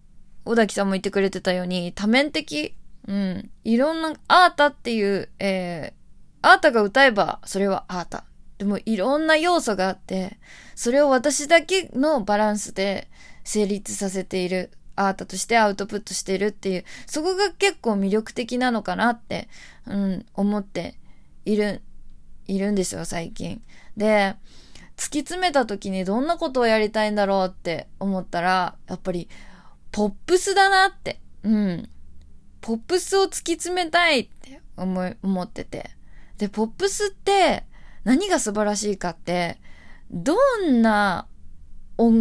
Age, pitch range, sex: 20-39, 190-295 Hz, female